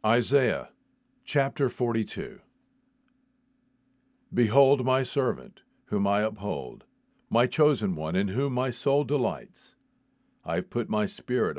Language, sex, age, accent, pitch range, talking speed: English, male, 50-69, American, 110-150 Hz, 115 wpm